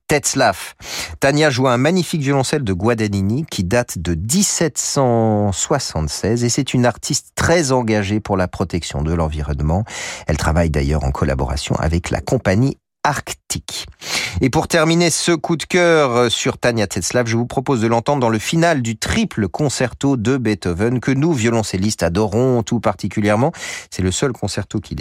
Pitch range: 95-135 Hz